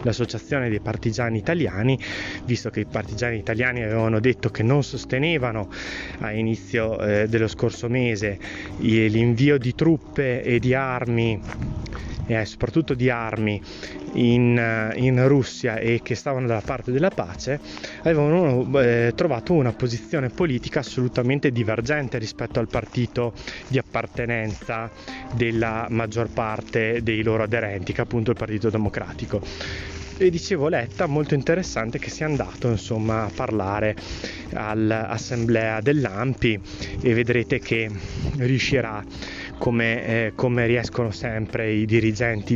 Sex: male